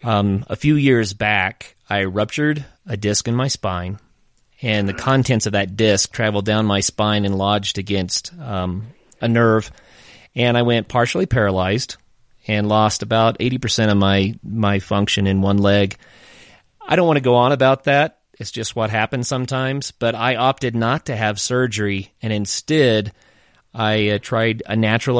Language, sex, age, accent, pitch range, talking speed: English, male, 30-49, American, 105-125 Hz, 165 wpm